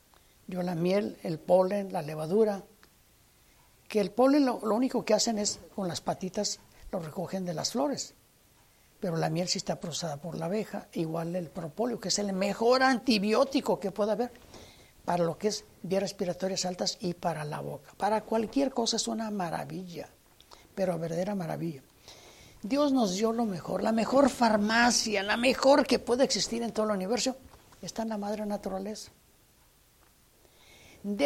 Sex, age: female, 50-69